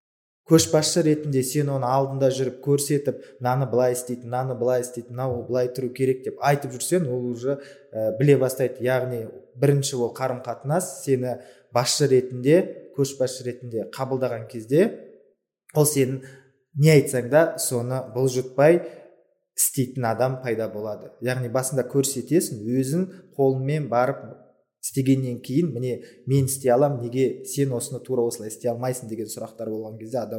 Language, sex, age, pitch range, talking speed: Russian, male, 20-39, 125-140 Hz, 100 wpm